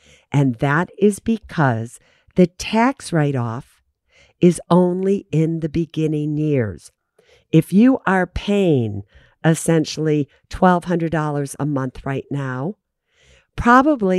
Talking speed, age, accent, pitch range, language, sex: 100 wpm, 50-69, American, 140-195 Hz, English, female